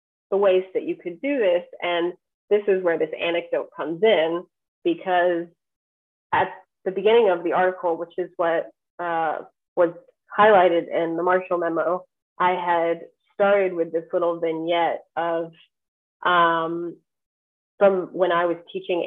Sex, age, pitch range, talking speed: female, 30-49, 170-190 Hz, 140 wpm